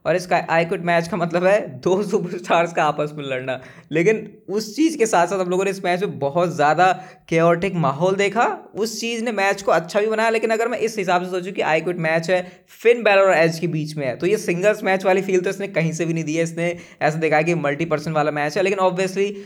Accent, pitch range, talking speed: native, 155-190 Hz, 260 wpm